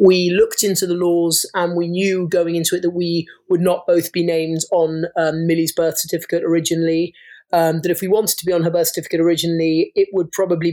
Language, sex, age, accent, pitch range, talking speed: English, male, 30-49, British, 165-185 Hz, 220 wpm